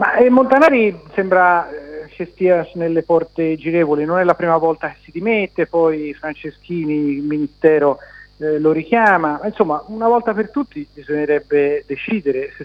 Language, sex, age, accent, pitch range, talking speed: Italian, male, 40-59, native, 140-180 Hz, 150 wpm